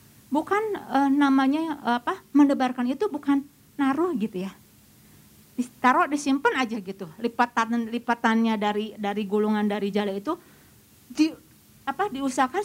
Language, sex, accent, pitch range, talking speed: Indonesian, female, native, 250-345 Hz, 120 wpm